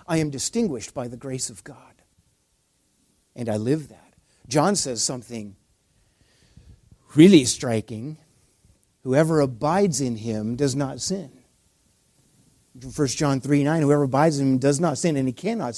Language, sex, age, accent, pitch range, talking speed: English, male, 50-69, American, 125-175 Hz, 145 wpm